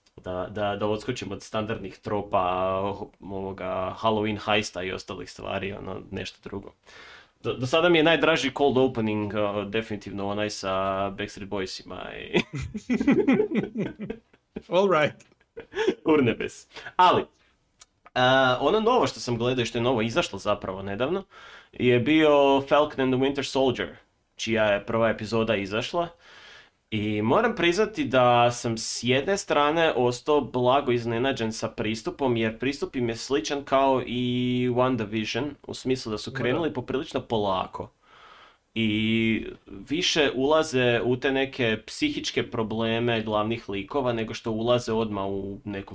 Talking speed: 130 wpm